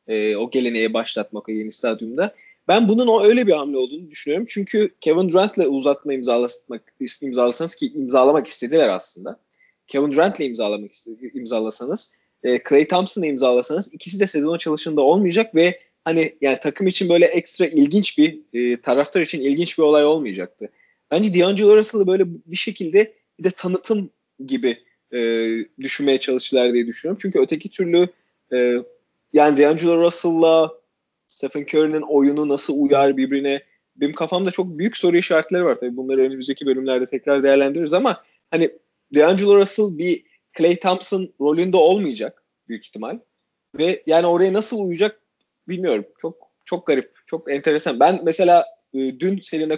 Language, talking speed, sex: Turkish, 145 wpm, male